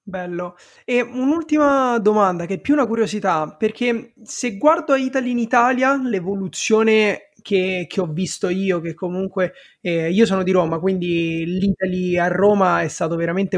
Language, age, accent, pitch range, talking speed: Italian, 20-39, native, 175-225 Hz, 155 wpm